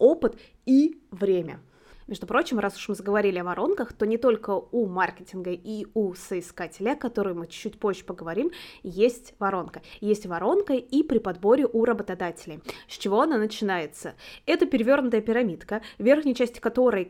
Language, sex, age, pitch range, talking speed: Russian, female, 20-39, 190-250 Hz, 160 wpm